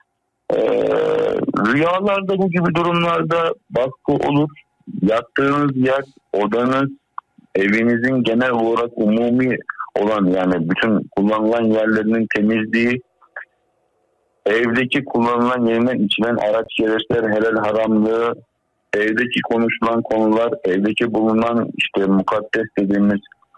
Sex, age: male, 50-69